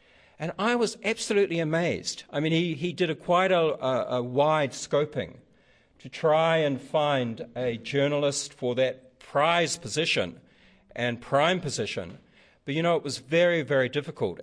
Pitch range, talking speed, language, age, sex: 125-160 Hz, 155 wpm, English, 50-69, male